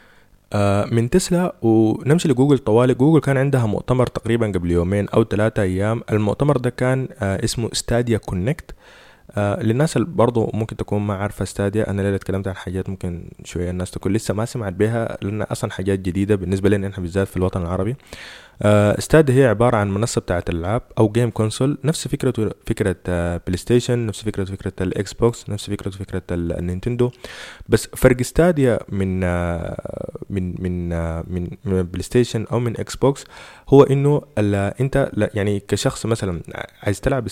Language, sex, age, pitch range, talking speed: Arabic, male, 20-39, 95-125 Hz, 165 wpm